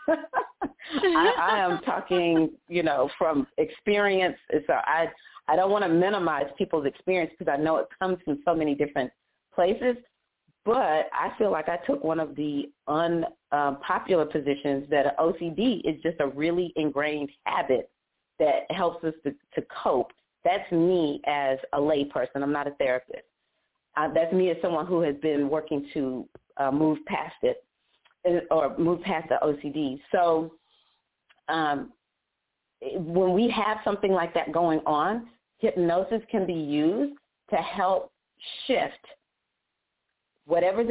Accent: American